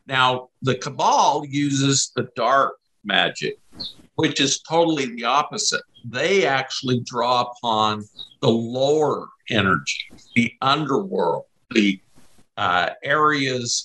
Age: 50-69